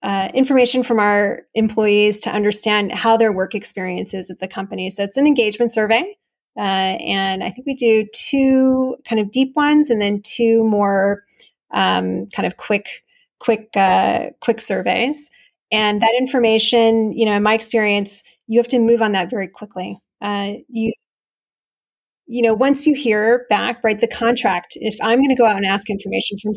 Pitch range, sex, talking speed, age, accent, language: 200-240 Hz, female, 180 wpm, 30-49, American, English